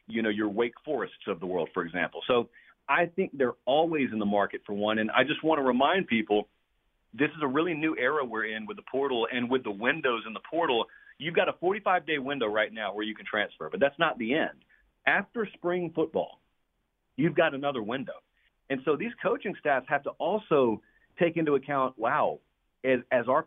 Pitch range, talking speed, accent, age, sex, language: 115-150 Hz, 215 wpm, American, 40-59, male, English